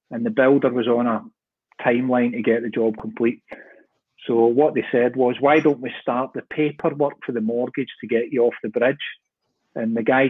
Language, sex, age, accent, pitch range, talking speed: English, male, 30-49, British, 120-160 Hz, 205 wpm